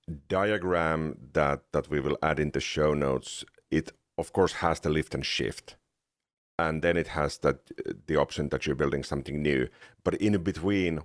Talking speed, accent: 180 wpm, Finnish